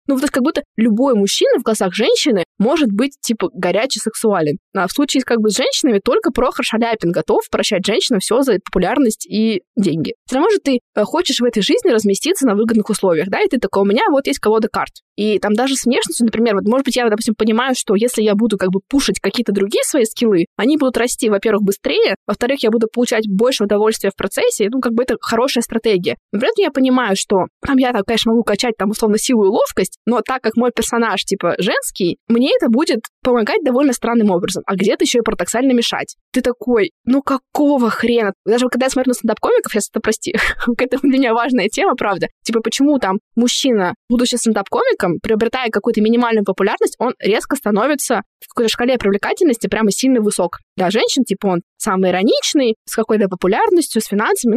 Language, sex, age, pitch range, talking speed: Russian, female, 20-39, 205-260 Hz, 200 wpm